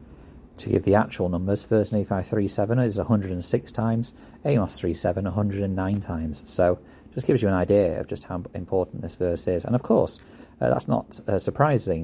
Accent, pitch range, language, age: British, 90-105 Hz, English, 30-49